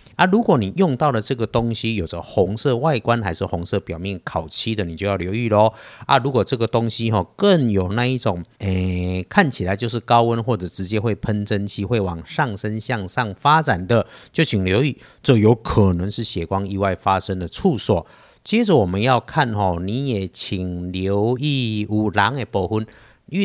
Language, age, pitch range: Chinese, 50-69, 95-125 Hz